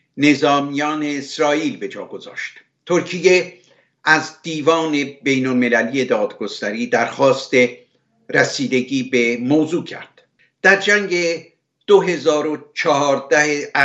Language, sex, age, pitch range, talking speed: Persian, male, 60-79, 130-155 Hz, 80 wpm